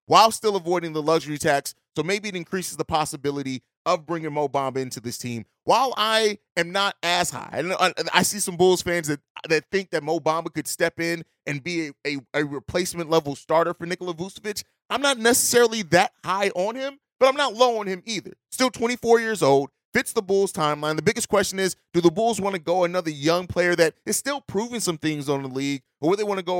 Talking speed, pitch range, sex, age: 220 wpm, 160-205 Hz, male, 30-49